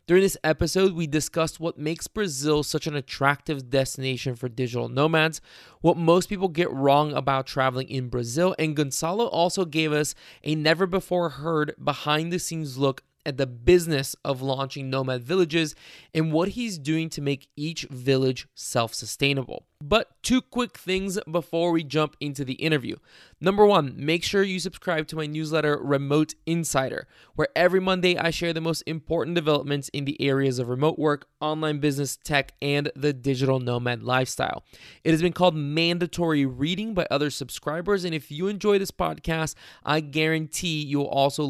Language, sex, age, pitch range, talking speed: English, male, 20-39, 135-170 Hz, 160 wpm